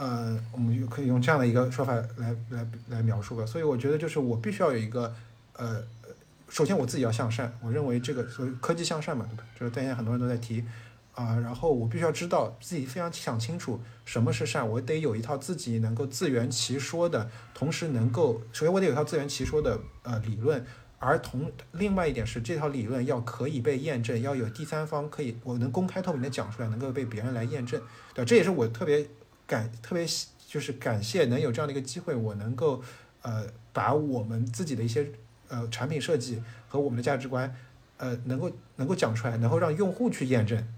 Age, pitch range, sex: 50-69, 115-145 Hz, male